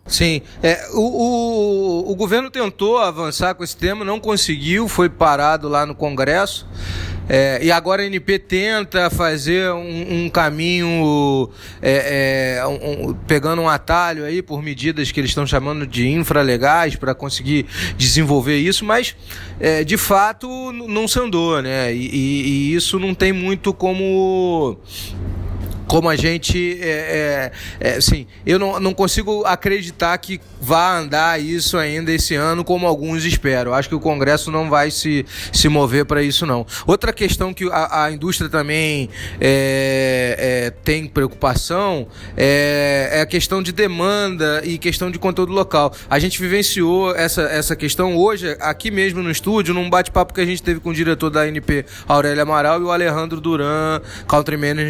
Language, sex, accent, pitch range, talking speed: Portuguese, male, Brazilian, 140-180 Hz, 165 wpm